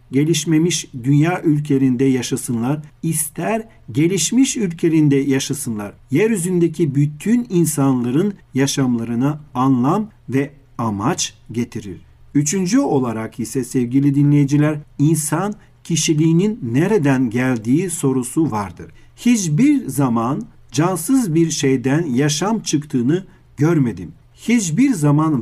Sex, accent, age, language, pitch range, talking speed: male, native, 50-69, Turkish, 135-170 Hz, 85 wpm